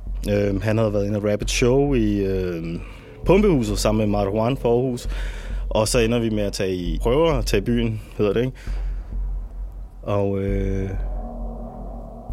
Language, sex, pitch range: Danish, male, 100-120 Hz